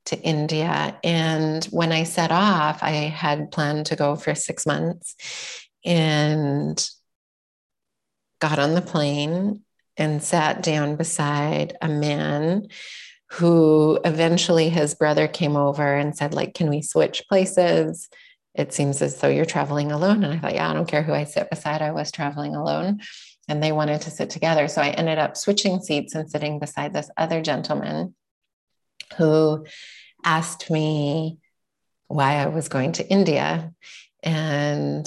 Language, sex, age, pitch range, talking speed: English, female, 30-49, 145-165 Hz, 150 wpm